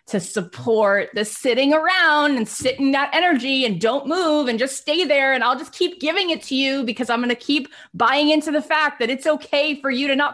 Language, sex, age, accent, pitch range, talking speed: English, female, 20-39, American, 210-300 Hz, 230 wpm